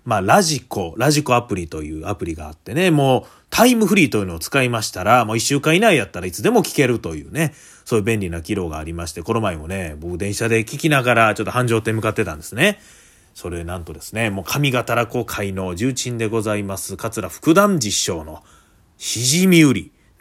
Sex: male